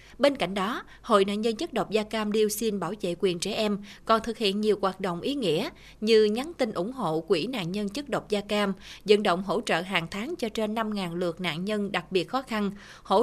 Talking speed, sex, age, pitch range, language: 245 wpm, female, 20-39, 185-230 Hz, Vietnamese